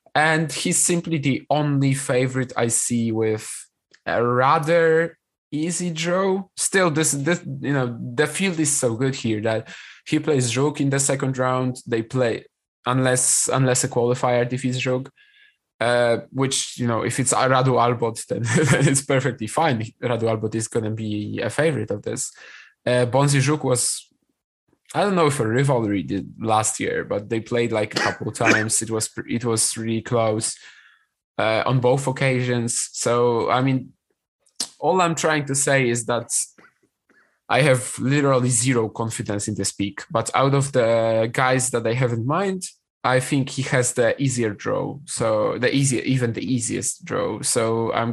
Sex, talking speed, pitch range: male, 170 wpm, 115-140 Hz